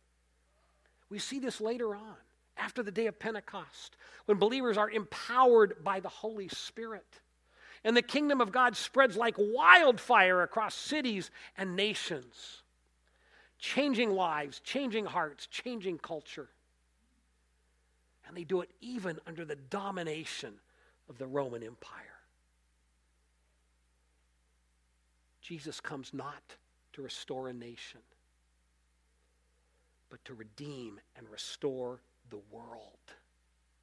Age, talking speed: 50-69, 110 wpm